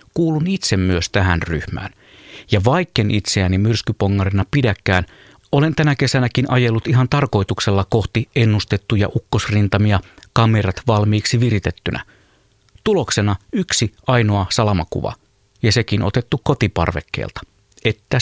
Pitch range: 100-125 Hz